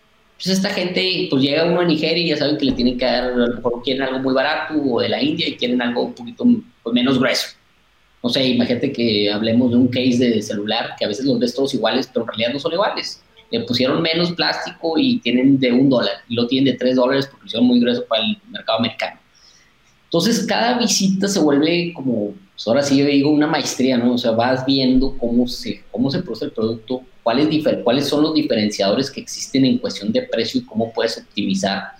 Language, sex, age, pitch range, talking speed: Spanish, male, 30-49, 120-165 Hz, 225 wpm